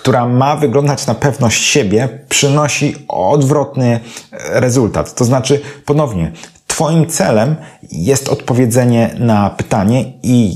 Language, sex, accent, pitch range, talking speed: Polish, male, native, 100-135 Hz, 110 wpm